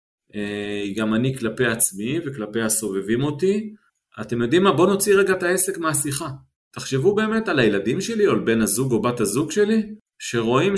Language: Hebrew